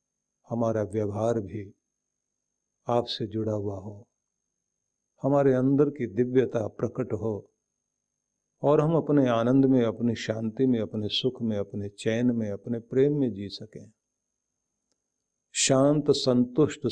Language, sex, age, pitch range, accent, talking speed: Hindi, male, 50-69, 110-140 Hz, native, 120 wpm